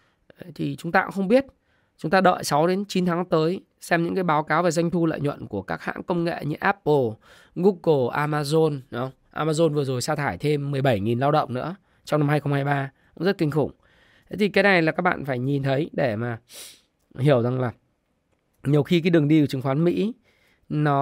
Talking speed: 210 wpm